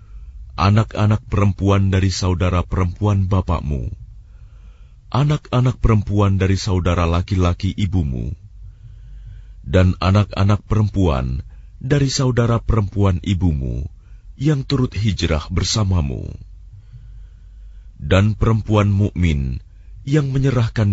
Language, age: English, 40-59